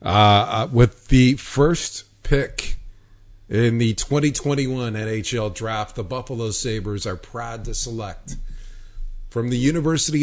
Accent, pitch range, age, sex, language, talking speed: American, 100-120 Hz, 40-59, male, English, 115 wpm